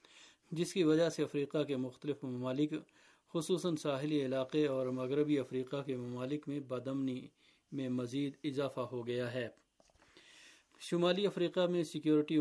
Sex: male